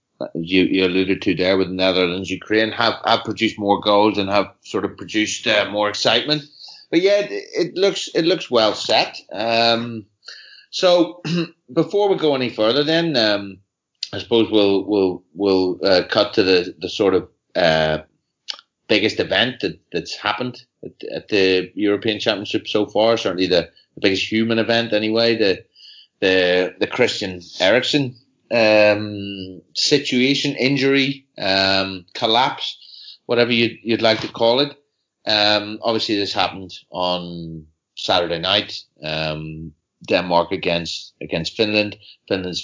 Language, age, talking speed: English, 30-49, 145 wpm